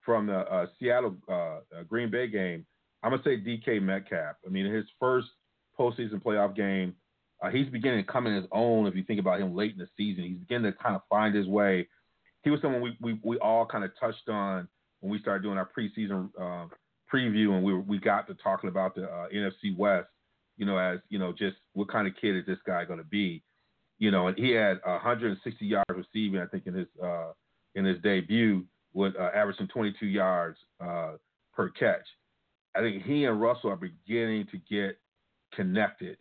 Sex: male